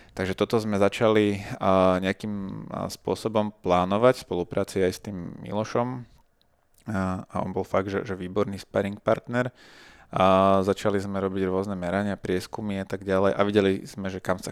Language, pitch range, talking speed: Slovak, 95-105 Hz, 165 wpm